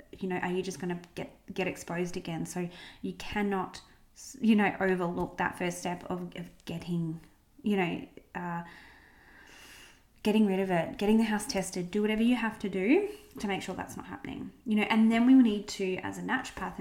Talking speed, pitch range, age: 200 wpm, 180-220 Hz, 20-39